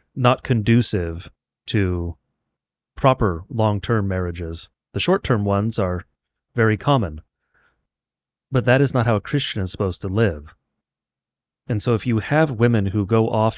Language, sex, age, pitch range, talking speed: English, male, 30-49, 95-115 Hz, 150 wpm